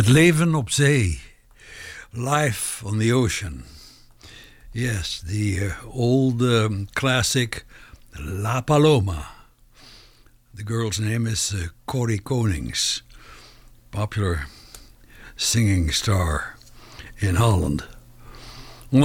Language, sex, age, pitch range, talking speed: English, male, 60-79, 100-125 Hz, 90 wpm